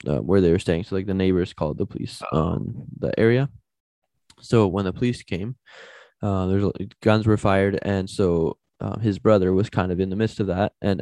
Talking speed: 220 wpm